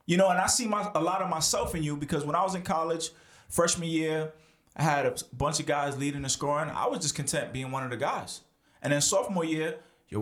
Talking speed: 245 wpm